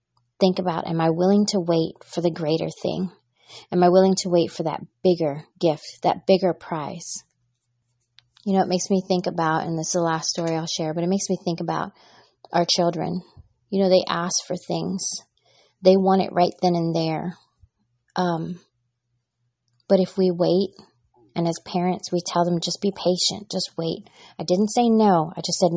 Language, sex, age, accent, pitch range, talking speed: English, female, 30-49, American, 155-190 Hz, 190 wpm